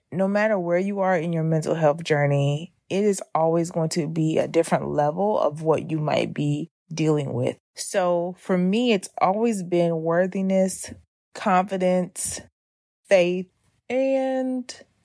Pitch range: 155-190 Hz